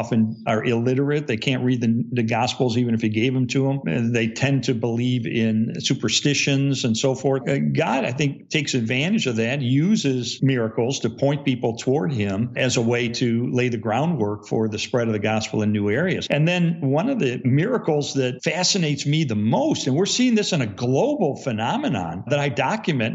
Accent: American